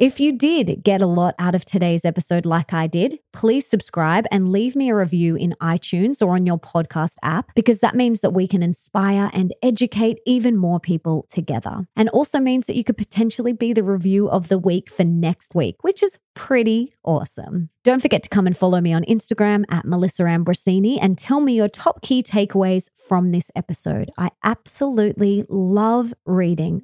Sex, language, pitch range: female, English, 170-220 Hz